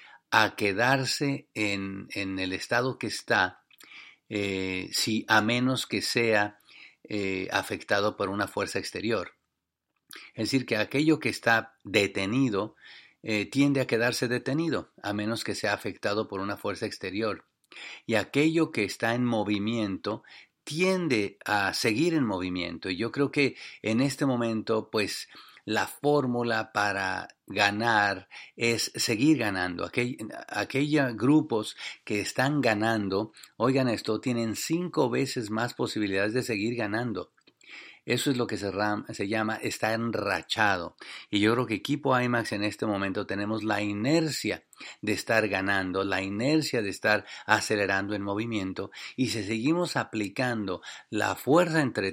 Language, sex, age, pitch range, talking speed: English, male, 50-69, 100-130 Hz, 135 wpm